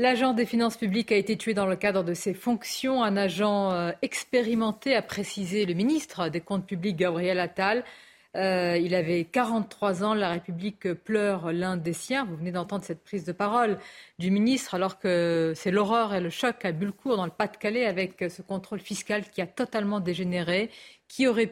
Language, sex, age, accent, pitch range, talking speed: French, female, 40-59, French, 180-215 Hz, 190 wpm